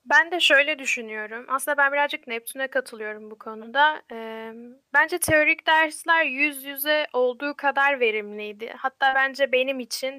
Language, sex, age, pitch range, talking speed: Turkish, female, 10-29, 235-290 Hz, 135 wpm